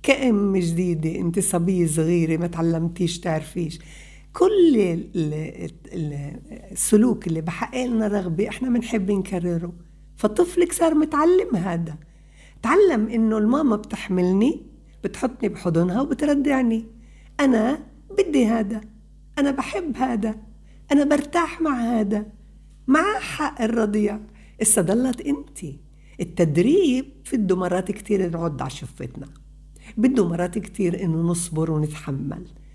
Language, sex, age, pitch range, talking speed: Arabic, female, 60-79, 180-260 Hz, 100 wpm